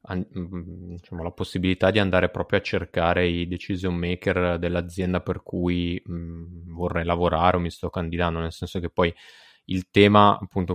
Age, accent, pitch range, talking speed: 20-39, native, 85-95 Hz, 160 wpm